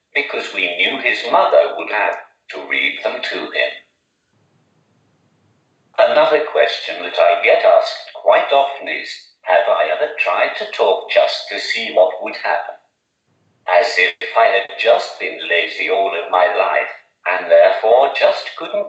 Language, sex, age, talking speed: English, male, 50-69, 155 wpm